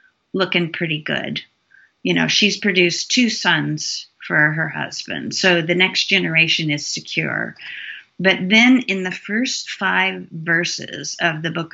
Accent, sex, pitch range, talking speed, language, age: American, female, 160-190 Hz, 145 wpm, English, 40-59